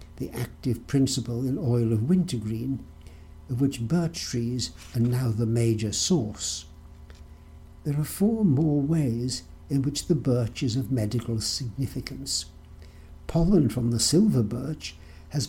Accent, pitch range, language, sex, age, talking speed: British, 105-135 Hz, English, male, 60-79, 135 wpm